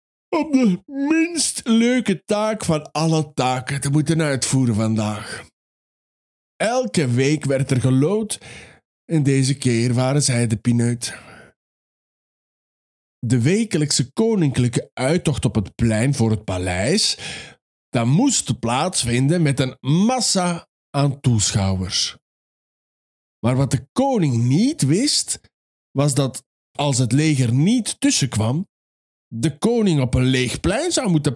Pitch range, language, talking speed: 120-165 Hz, Dutch, 120 wpm